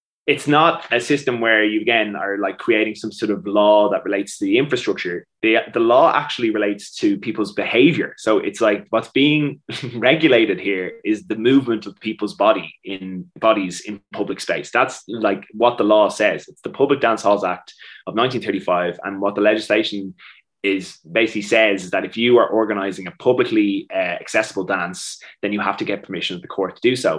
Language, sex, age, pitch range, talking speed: English, male, 20-39, 95-115 Hz, 195 wpm